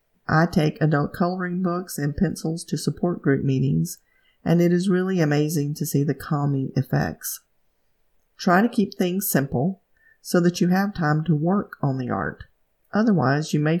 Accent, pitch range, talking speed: American, 140-180 Hz, 170 wpm